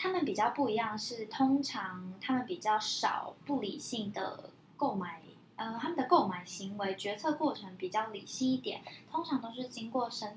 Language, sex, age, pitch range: Chinese, female, 10-29, 195-260 Hz